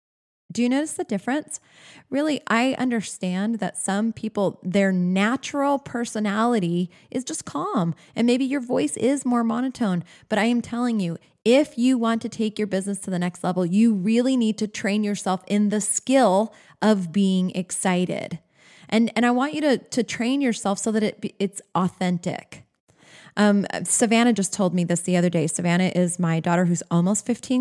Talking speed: 180 wpm